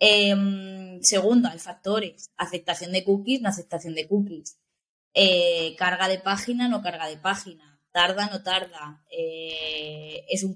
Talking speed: 140 wpm